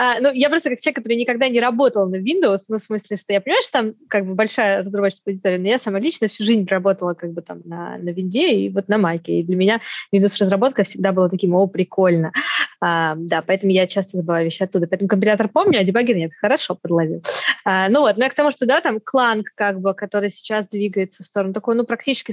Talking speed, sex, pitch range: 235 wpm, female, 185-240 Hz